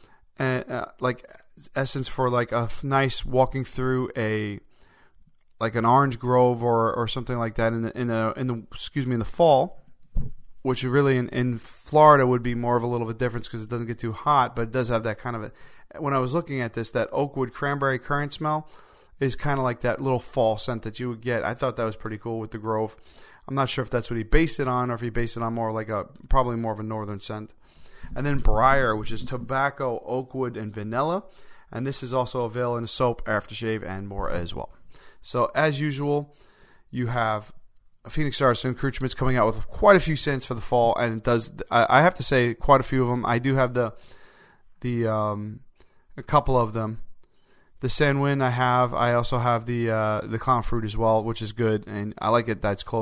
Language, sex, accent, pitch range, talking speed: English, male, American, 110-130 Hz, 230 wpm